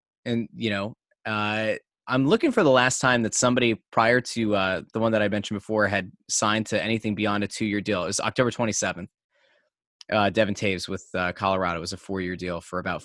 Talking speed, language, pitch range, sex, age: 205 wpm, English, 105-130 Hz, male, 20-39